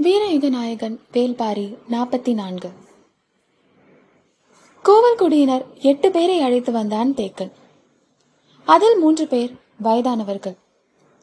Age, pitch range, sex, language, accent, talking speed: 20-39, 225-320 Hz, female, Tamil, native, 80 wpm